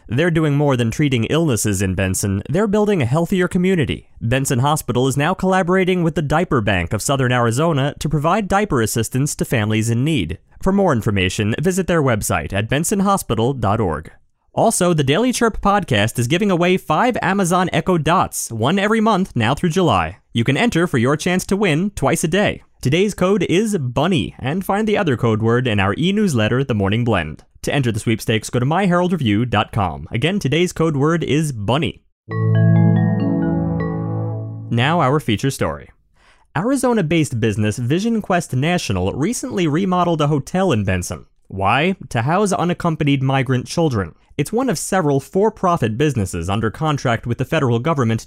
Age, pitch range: 30-49, 115-180 Hz